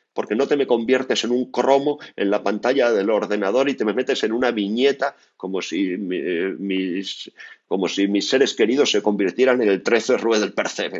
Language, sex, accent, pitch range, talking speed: Spanish, male, Spanish, 120-170 Hz, 200 wpm